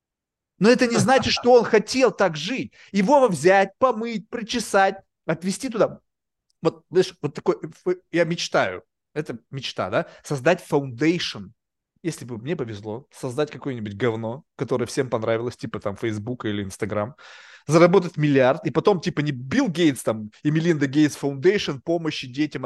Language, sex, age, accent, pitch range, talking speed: Russian, male, 30-49, native, 145-205 Hz, 150 wpm